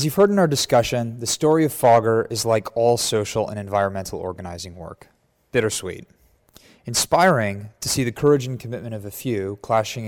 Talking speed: 180 wpm